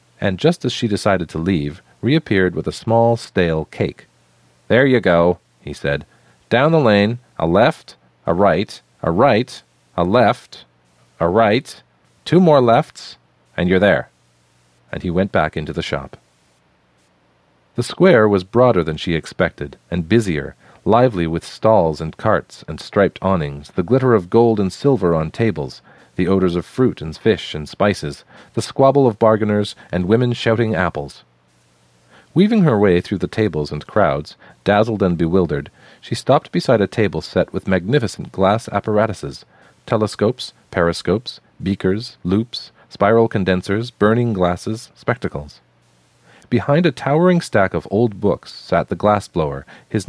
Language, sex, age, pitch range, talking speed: English, male, 40-59, 80-115 Hz, 150 wpm